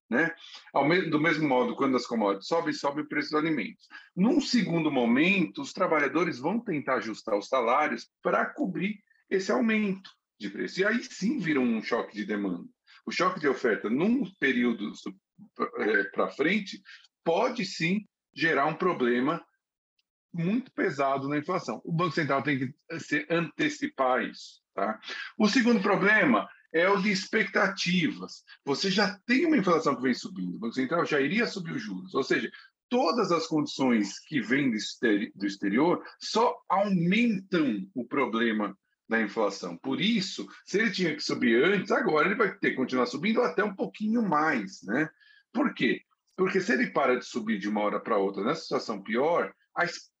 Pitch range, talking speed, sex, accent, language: 140-215 Hz, 165 wpm, male, Brazilian, Portuguese